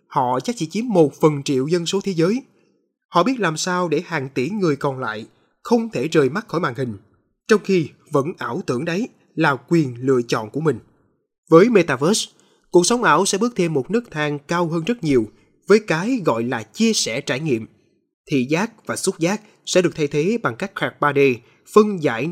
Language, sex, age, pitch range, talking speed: Vietnamese, male, 20-39, 135-195 Hz, 210 wpm